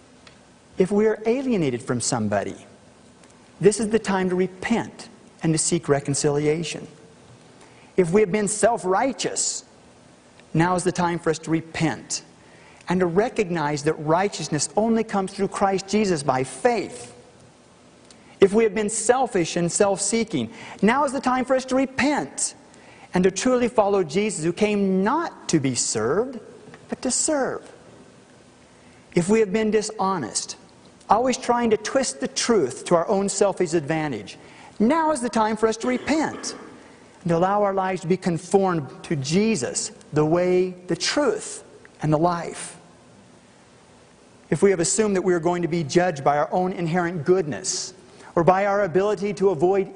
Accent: American